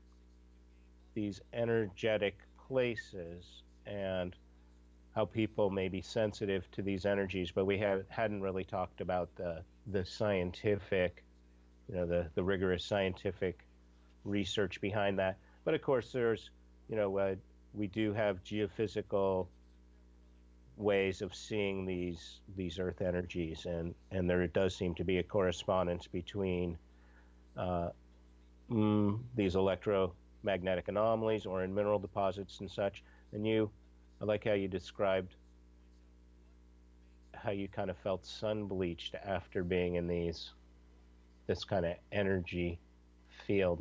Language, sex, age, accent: English, male, 50-69, American